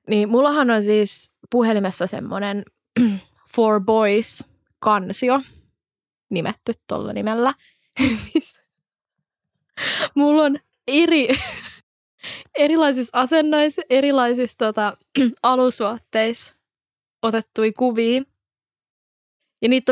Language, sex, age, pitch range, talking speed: Finnish, female, 20-39, 200-255 Hz, 70 wpm